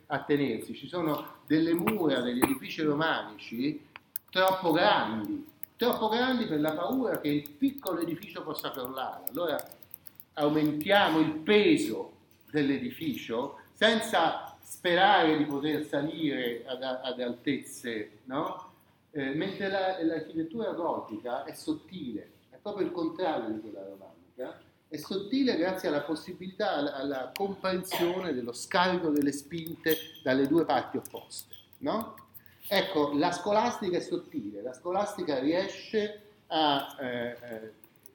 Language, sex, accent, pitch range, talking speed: Italian, male, native, 145-210 Hz, 120 wpm